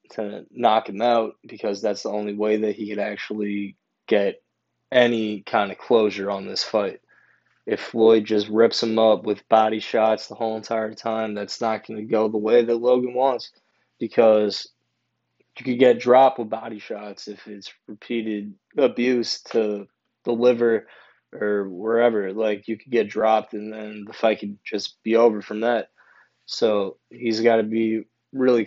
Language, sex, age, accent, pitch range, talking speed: English, male, 20-39, American, 105-115 Hz, 170 wpm